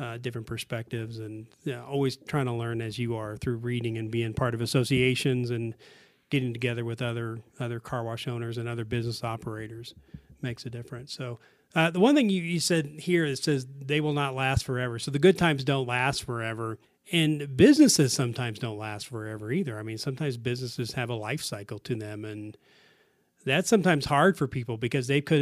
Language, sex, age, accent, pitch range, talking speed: English, male, 40-59, American, 115-140 Hz, 200 wpm